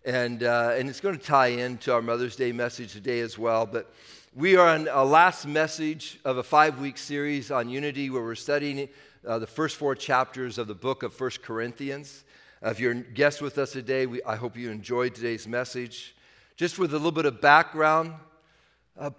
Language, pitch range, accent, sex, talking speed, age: English, 135-175 Hz, American, male, 205 wpm, 50-69